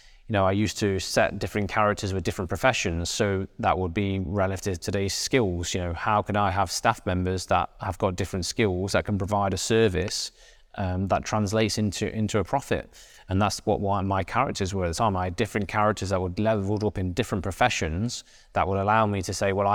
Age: 20-39